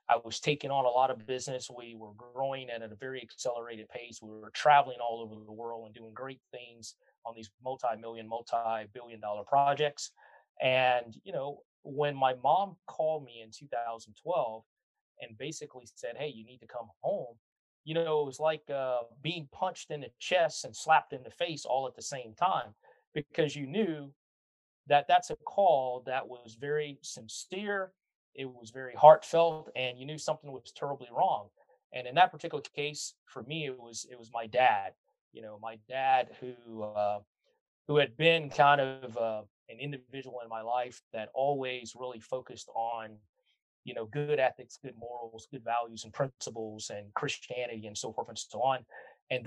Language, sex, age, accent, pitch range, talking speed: English, male, 30-49, American, 115-145 Hz, 180 wpm